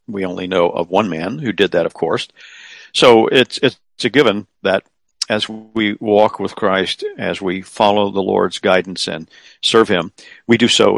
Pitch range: 95-120 Hz